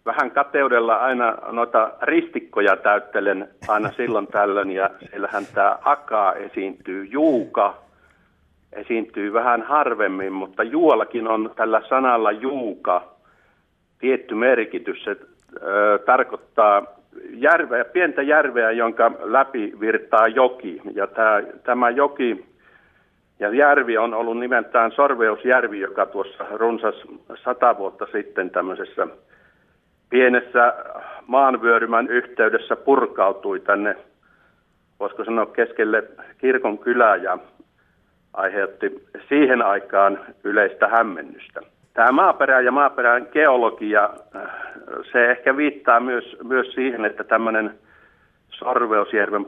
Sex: male